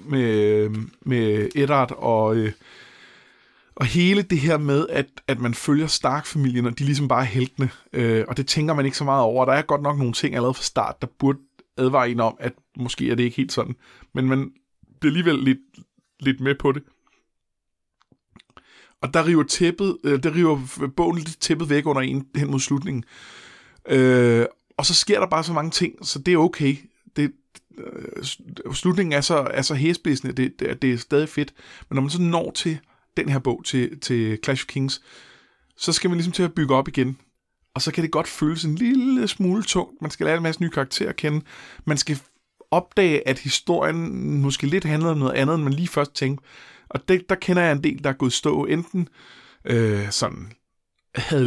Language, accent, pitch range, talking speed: Danish, native, 125-160 Hz, 195 wpm